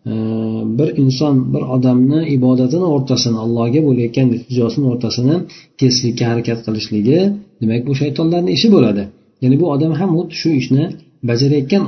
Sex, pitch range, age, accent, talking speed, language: male, 115-150 Hz, 50-69, Turkish, 150 wpm, Russian